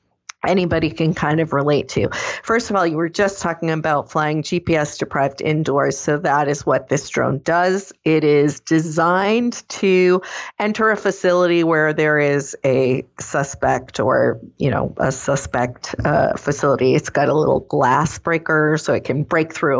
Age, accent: 40-59, American